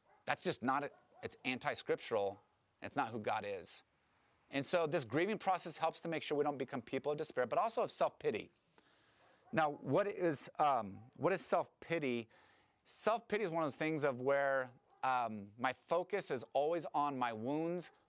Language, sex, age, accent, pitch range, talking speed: English, male, 30-49, American, 130-165 Hz, 165 wpm